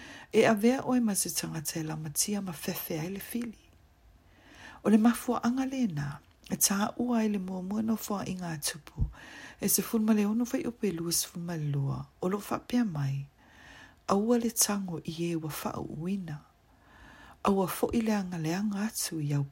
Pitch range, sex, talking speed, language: 145-215 Hz, female, 180 wpm, English